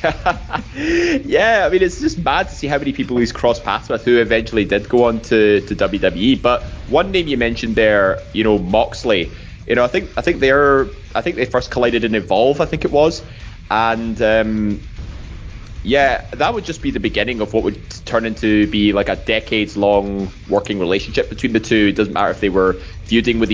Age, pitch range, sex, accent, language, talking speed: 20-39, 100-115 Hz, male, British, English, 205 wpm